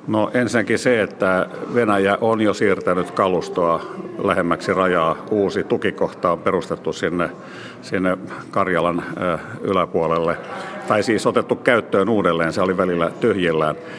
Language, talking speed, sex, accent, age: Finnish, 120 wpm, male, native, 50-69